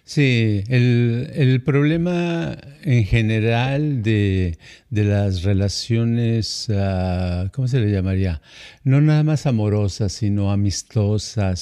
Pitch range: 110-145 Hz